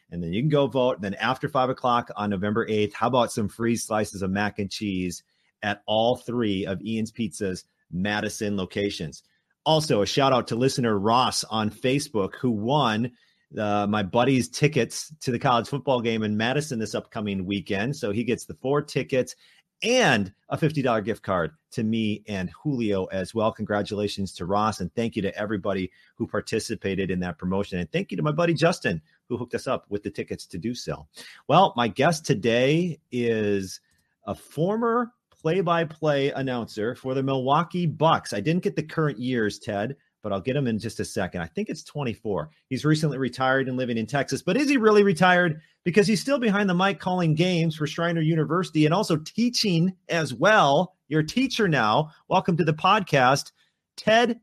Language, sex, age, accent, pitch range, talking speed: English, male, 40-59, American, 105-160 Hz, 190 wpm